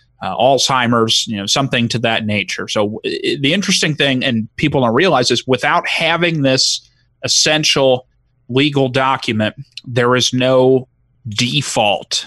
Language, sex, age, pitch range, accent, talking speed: English, male, 30-49, 115-135 Hz, American, 135 wpm